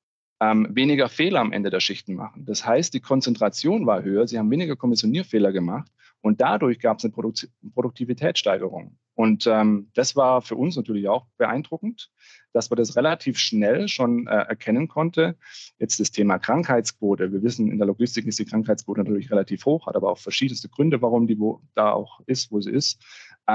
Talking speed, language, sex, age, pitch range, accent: 180 wpm, German, male, 40-59, 105-120 Hz, German